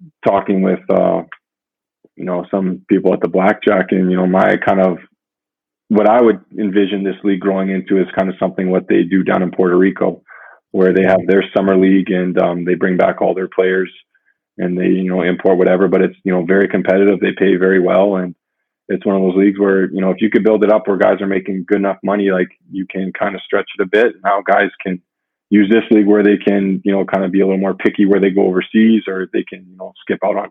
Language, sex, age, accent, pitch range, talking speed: English, male, 20-39, American, 95-100 Hz, 250 wpm